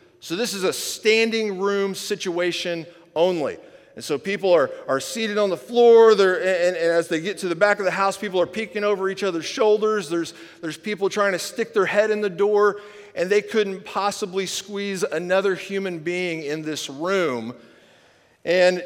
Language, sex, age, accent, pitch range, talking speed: English, male, 40-59, American, 170-220 Hz, 190 wpm